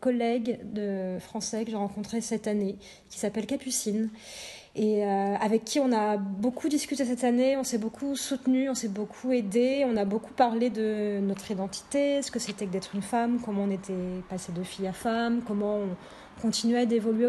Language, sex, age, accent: French, female, 30-49, French